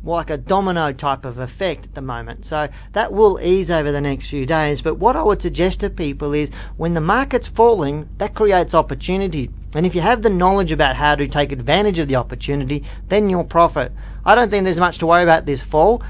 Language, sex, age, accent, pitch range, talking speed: English, male, 40-59, Australian, 140-175 Hz, 225 wpm